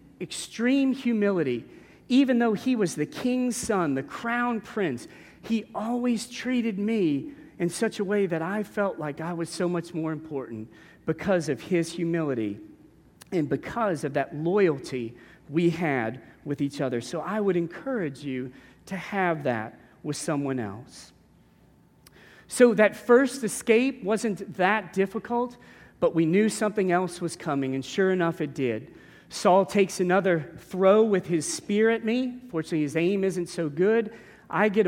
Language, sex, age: English, male, 40-59